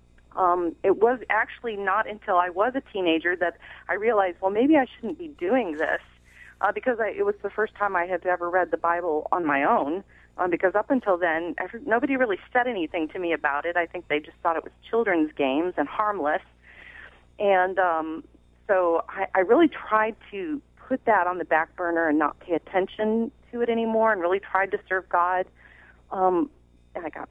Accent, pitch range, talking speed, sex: American, 170-225 Hz, 200 wpm, female